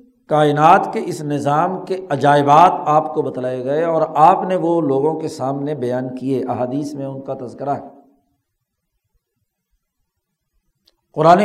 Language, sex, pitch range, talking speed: Urdu, male, 150-195 Hz, 135 wpm